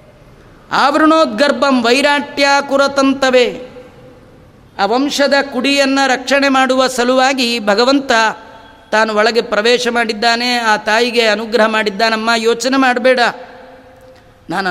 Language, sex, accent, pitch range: Kannada, female, native, 220-270 Hz